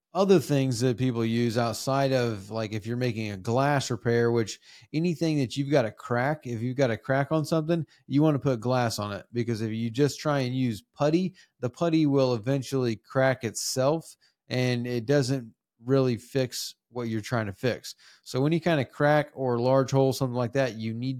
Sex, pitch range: male, 120-140 Hz